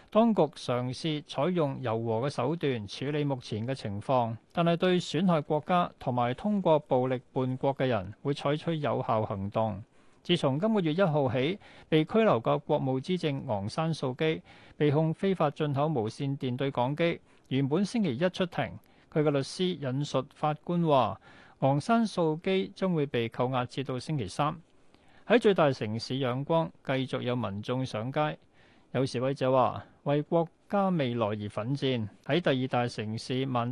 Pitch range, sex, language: 125-160 Hz, male, Chinese